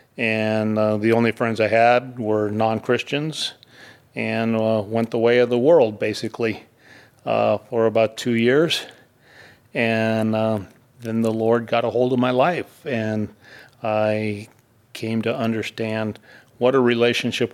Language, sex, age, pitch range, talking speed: English, male, 40-59, 110-120 Hz, 145 wpm